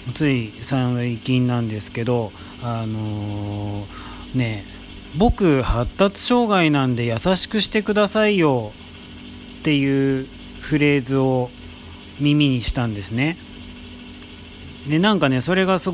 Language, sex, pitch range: Japanese, male, 115-145 Hz